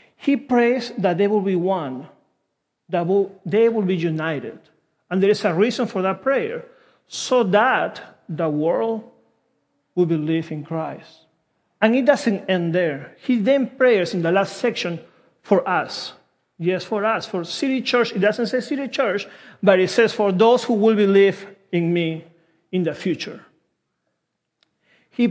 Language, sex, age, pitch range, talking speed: English, male, 40-59, 170-235 Hz, 160 wpm